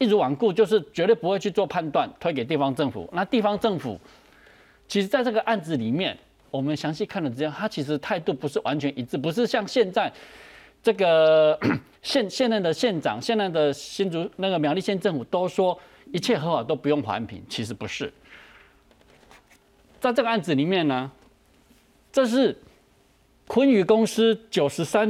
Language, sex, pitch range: Chinese, male, 150-220 Hz